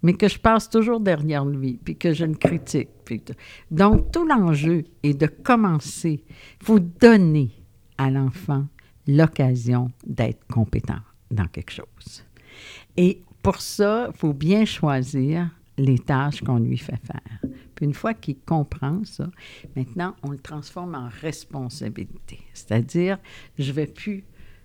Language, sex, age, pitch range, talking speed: French, female, 60-79, 125-175 Hz, 145 wpm